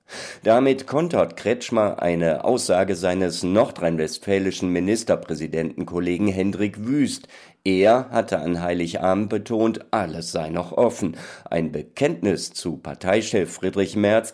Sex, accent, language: male, German, German